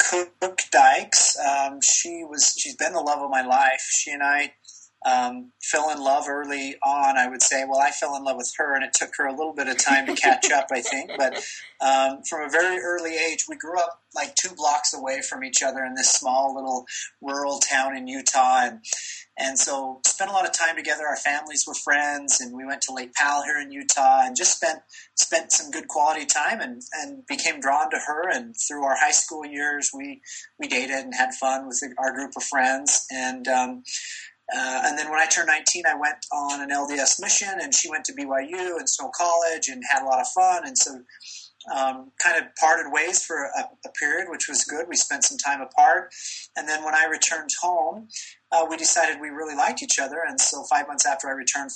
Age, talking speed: 30-49, 225 wpm